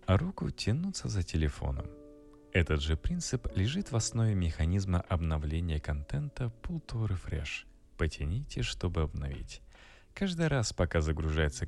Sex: male